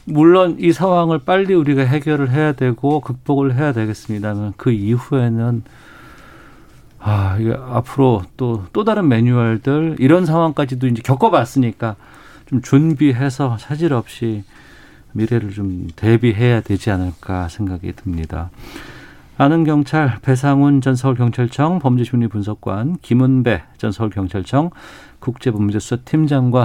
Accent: native